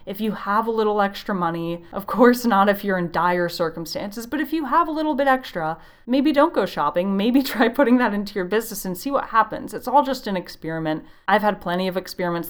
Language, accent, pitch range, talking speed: English, American, 175-240 Hz, 230 wpm